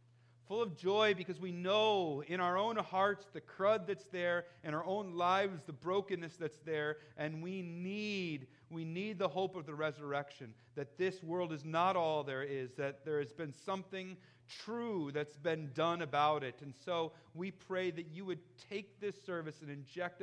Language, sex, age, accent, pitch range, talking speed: English, male, 40-59, American, 120-185 Hz, 185 wpm